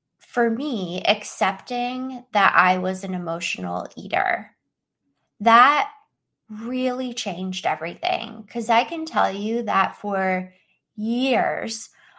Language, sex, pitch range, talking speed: English, female, 190-230 Hz, 105 wpm